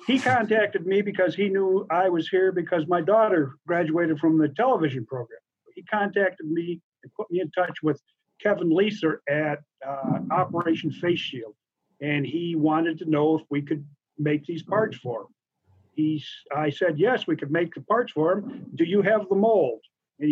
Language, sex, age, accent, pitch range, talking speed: English, male, 50-69, American, 145-185 Hz, 185 wpm